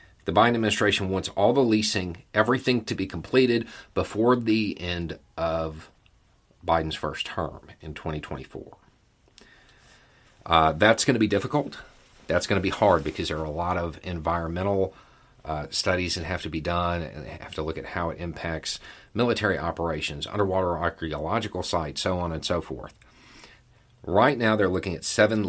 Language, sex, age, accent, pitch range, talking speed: English, male, 40-59, American, 85-105 Hz, 160 wpm